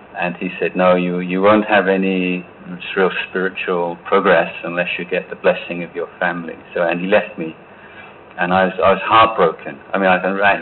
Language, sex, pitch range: Thai, male, 90-95 Hz